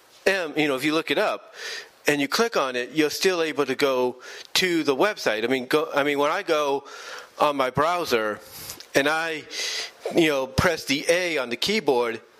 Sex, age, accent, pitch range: male, 40-59, American, 130-170 Hz